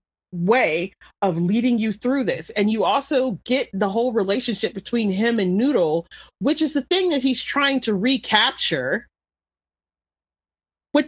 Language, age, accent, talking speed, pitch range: English, 30-49, American, 145 wpm, 170-245 Hz